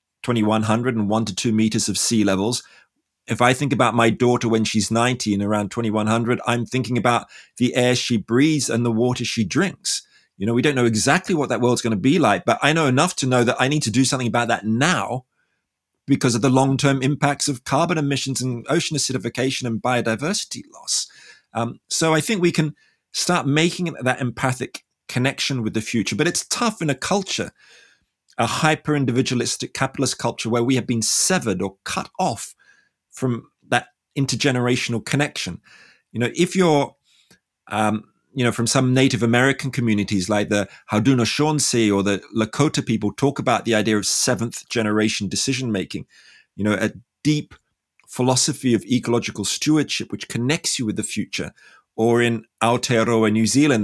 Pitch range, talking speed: 110-135 Hz, 180 wpm